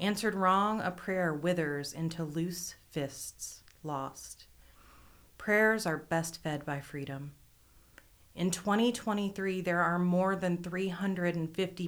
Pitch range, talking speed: 150-185 Hz, 110 wpm